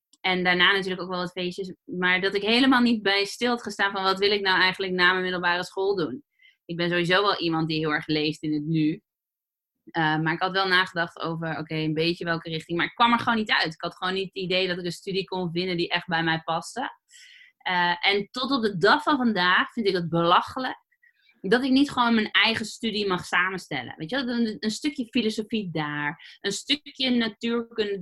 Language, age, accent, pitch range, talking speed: Dutch, 20-39, Dutch, 170-220 Hz, 230 wpm